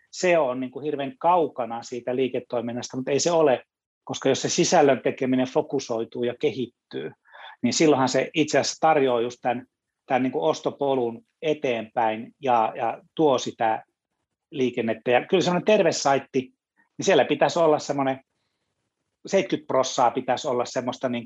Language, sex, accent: Finnish, male, native